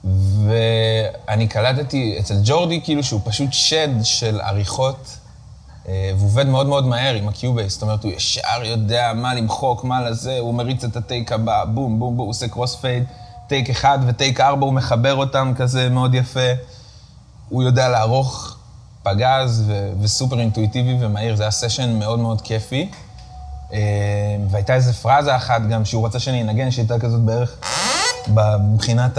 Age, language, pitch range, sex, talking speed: 20-39, Hebrew, 110-125 Hz, male, 155 wpm